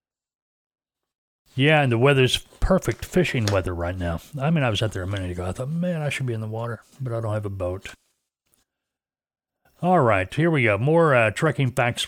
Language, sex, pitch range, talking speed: English, male, 105-140 Hz, 210 wpm